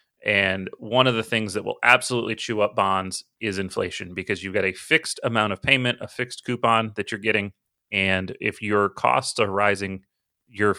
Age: 30-49